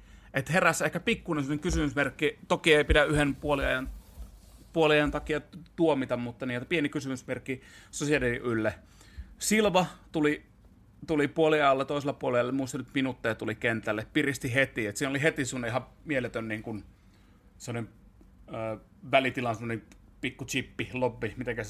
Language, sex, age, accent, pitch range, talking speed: Finnish, male, 30-49, native, 105-140 Hz, 120 wpm